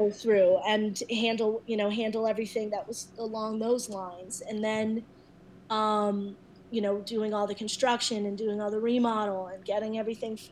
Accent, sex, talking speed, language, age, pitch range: American, female, 165 wpm, English, 20-39, 195-220 Hz